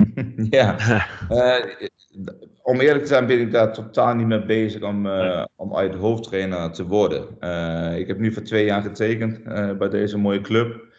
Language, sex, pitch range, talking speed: English, male, 90-110 Hz, 180 wpm